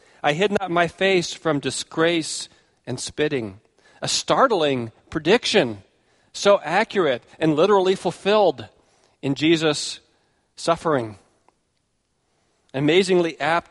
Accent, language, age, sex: American, English, 40-59, male